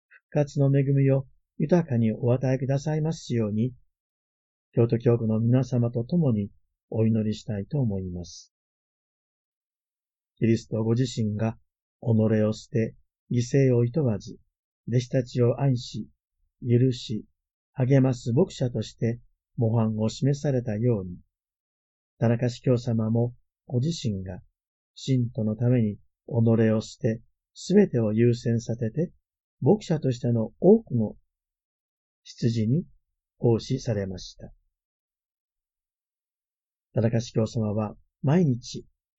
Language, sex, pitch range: Japanese, male, 105-130 Hz